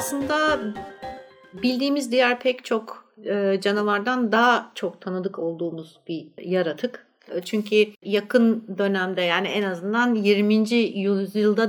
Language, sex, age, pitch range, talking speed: Turkish, female, 60-79, 190-230 Hz, 105 wpm